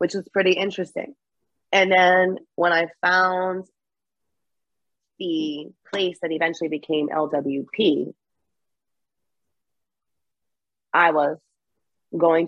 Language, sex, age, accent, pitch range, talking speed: English, female, 30-49, American, 155-190 Hz, 85 wpm